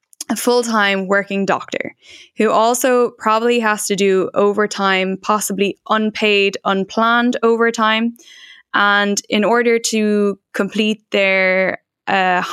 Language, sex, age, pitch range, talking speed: German, female, 10-29, 195-230 Hz, 105 wpm